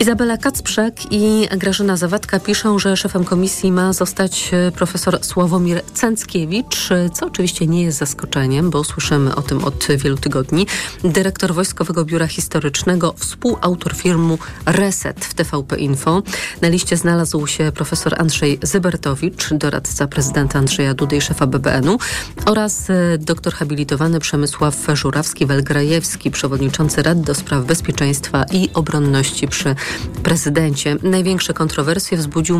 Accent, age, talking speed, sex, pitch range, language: native, 40-59, 125 wpm, female, 150-185 Hz, Polish